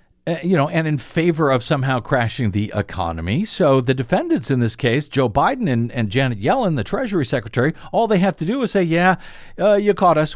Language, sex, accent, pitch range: English, male, American, 130-185 Hz